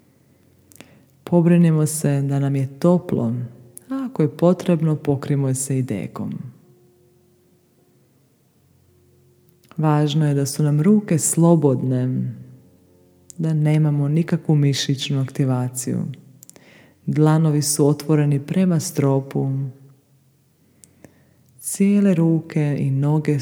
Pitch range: 135-165 Hz